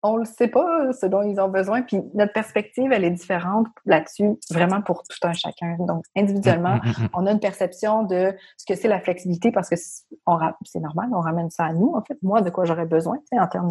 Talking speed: 225 wpm